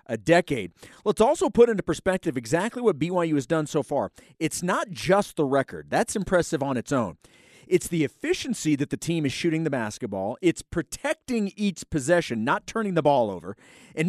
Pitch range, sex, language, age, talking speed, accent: 155-215 Hz, male, English, 40-59, 190 wpm, American